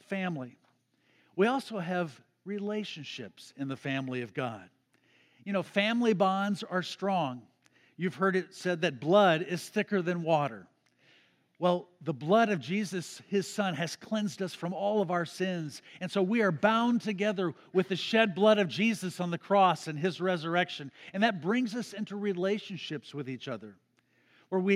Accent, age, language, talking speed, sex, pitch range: American, 50-69, English, 170 wpm, male, 160-205 Hz